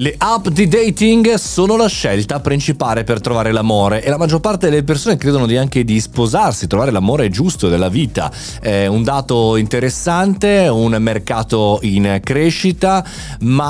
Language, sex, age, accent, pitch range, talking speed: Italian, male, 30-49, native, 110-160 Hz, 150 wpm